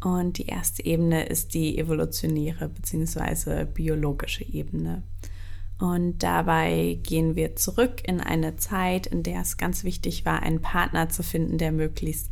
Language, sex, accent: German, female, German